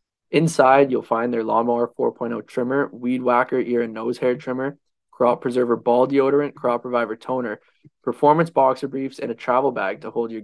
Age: 20-39